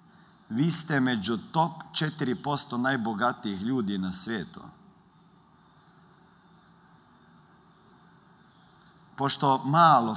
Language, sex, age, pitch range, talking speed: Croatian, male, 40-59, 135-180 Hz, 65 wpm